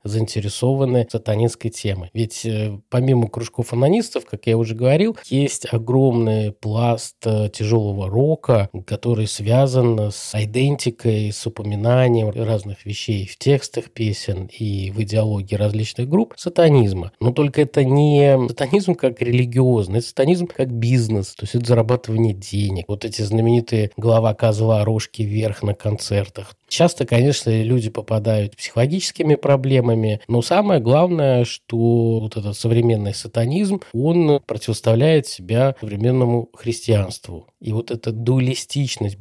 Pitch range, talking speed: 110-130 Hz, 125 wpm